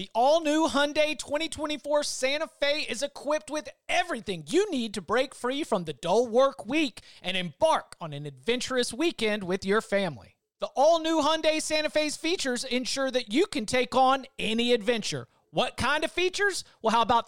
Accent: American